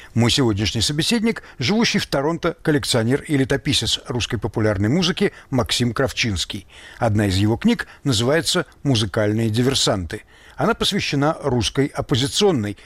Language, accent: Russian, native